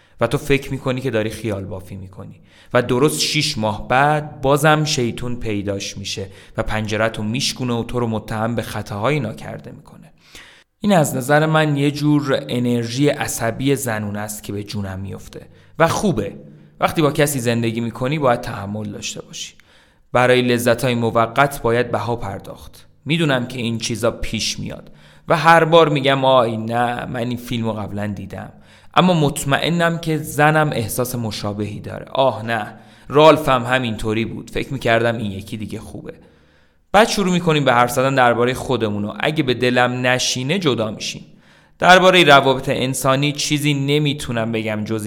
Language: Persian